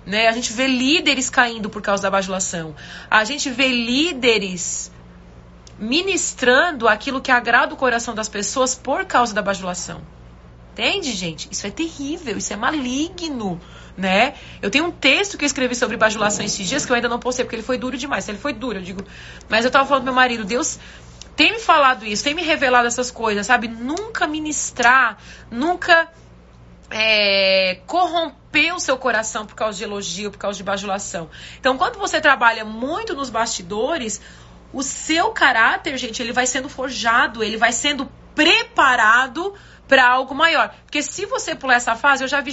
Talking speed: 175 wpm